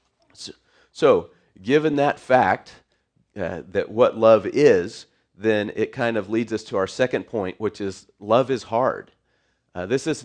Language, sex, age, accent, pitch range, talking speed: English, male, 40-59, American, 95-115 Hz, 165 wpm